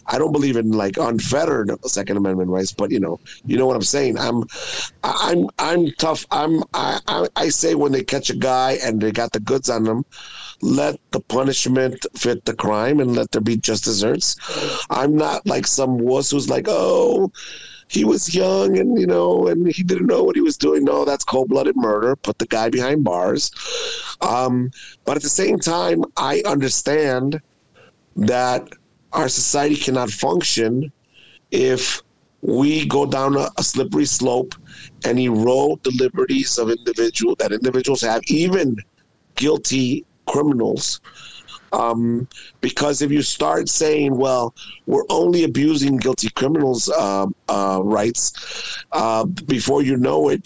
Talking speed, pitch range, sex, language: 160 wpm, 115-155 Hz, male, English